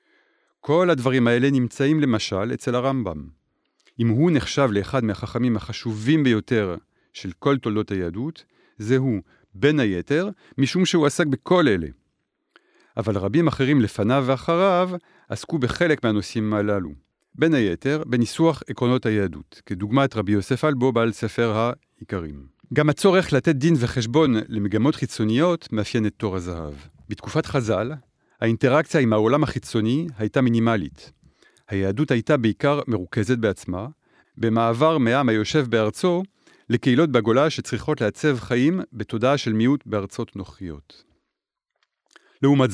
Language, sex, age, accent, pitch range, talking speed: Hebrew, male, 40-59, French, 105-145 Hz, 120 wpm